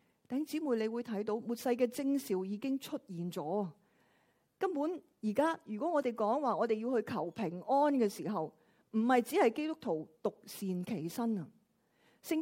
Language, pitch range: Chinese, 200-255 Hz